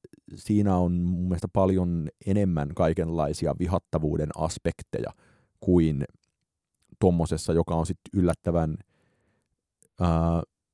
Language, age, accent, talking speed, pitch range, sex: Finnish, 30-49, native, 80 wpm, 80-100 Hz, male